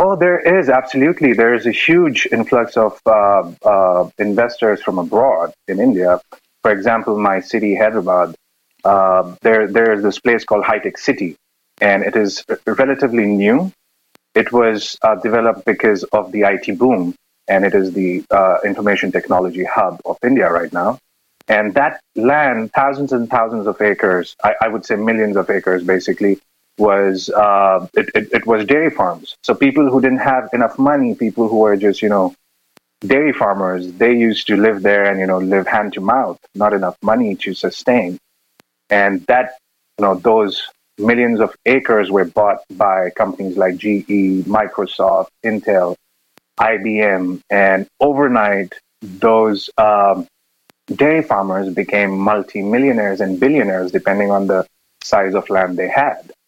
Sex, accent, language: male, Indian, English